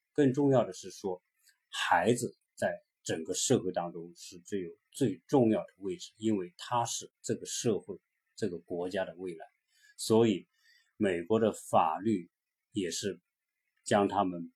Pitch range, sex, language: 95-125 Hz, male, Chinese